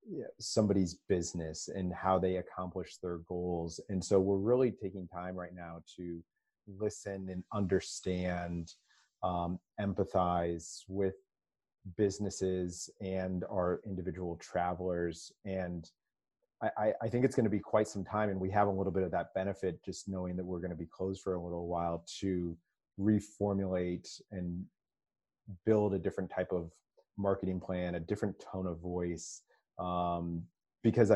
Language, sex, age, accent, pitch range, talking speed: English, male, 30-49, American, 90-100 Hz, 145 wpm